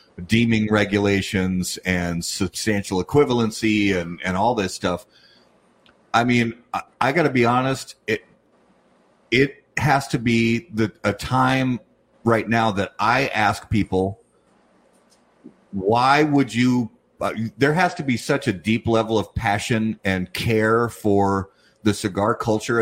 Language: English